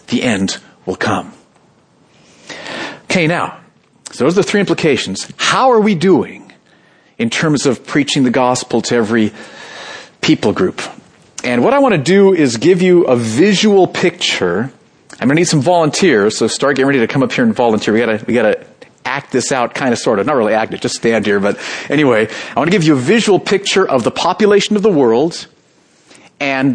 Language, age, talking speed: English, 40-59, 195 wpm